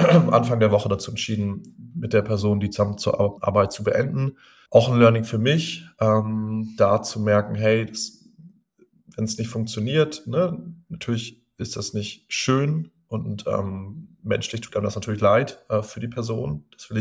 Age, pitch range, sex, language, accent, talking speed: 20-39, 100-120 Hz, male, German, German, 165 wpm